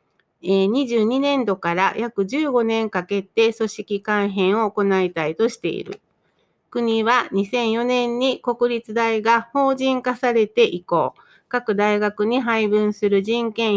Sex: female